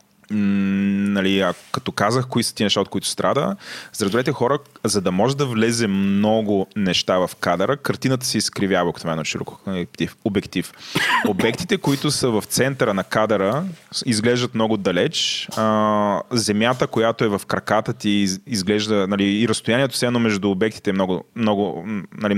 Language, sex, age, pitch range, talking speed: Bulgarian, male, 20-39, 100-120 Hz, 160 wpm